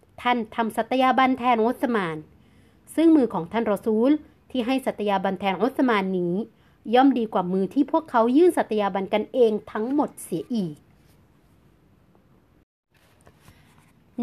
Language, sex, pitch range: Thai, female, 200-250 Hz